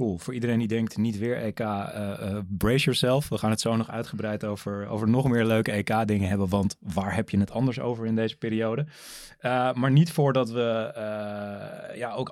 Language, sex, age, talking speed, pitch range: Dutch, male, 20-39, 210 wpm, 100-120 Hz